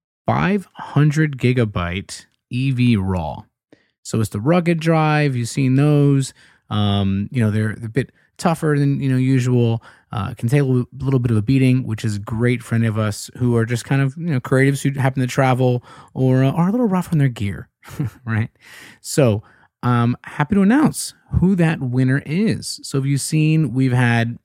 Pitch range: 110-145 Hz